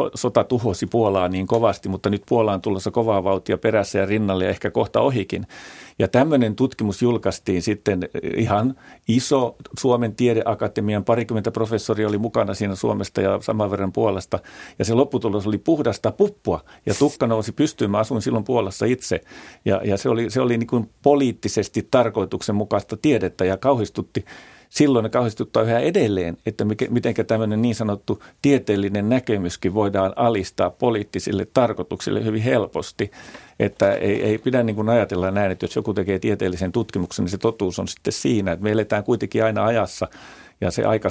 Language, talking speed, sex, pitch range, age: Finnish, 160 wpm, male, 100-115 Hz, 40-59